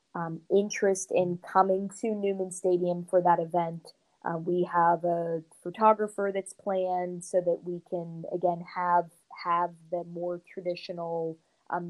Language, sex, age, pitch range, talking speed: English, female, 20-39, 165-185 Hz, 140 wpm